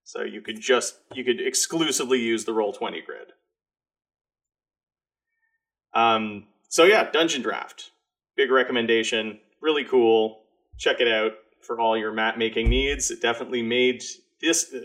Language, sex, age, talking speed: English, male, 30-49, 135 wpm